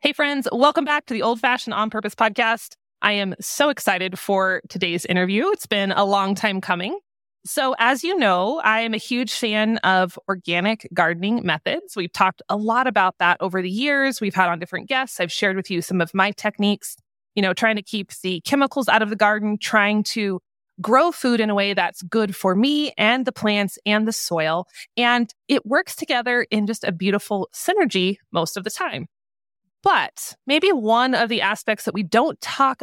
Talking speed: 200 wpm